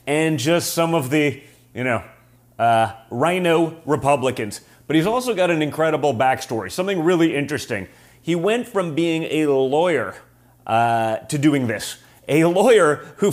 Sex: male